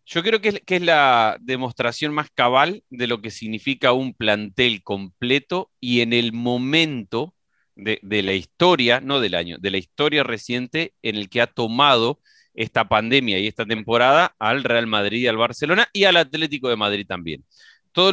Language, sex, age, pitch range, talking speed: Spanish, male, 30-49, 115-155 Hz, 175 wpm